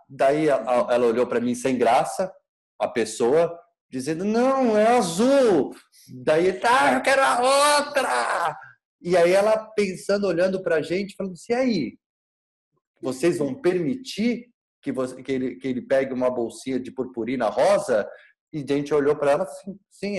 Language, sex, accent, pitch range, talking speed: Portuguese, male, Brazilian, 130-195 Hz, 170 wpm